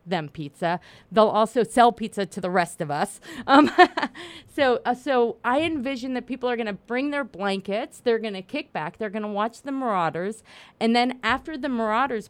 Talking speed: 200 wpm